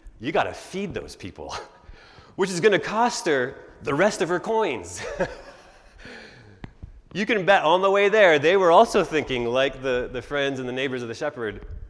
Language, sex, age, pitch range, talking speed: English, male, 30-49, 90-145 Hz, 190 wpm